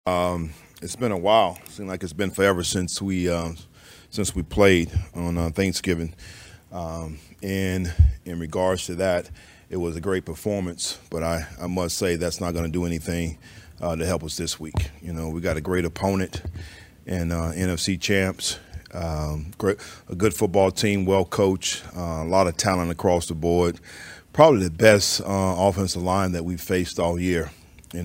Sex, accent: male, American